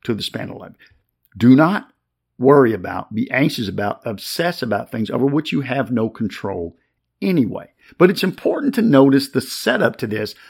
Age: 50-69